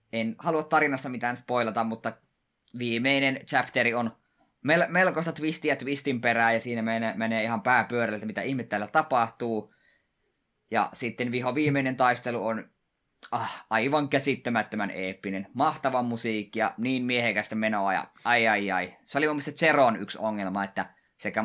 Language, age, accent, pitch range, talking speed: Finnish, 20-39, native, 105-125 Hz, 145 wpm